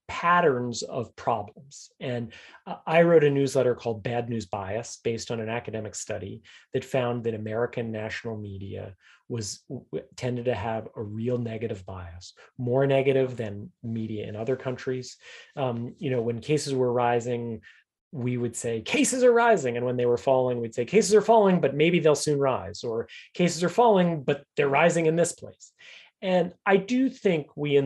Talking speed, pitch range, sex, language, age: 175 wpm, 115-145 Hz, male, English, 30-49